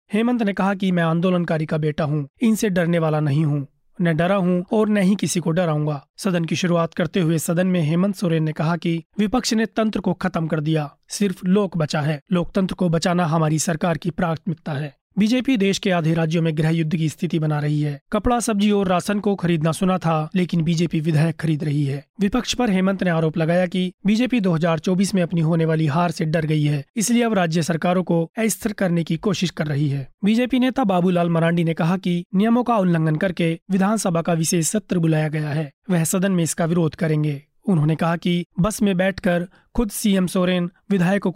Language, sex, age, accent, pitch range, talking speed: Hindi, male, 30-49, native, 165-195 Hz, 210 wpm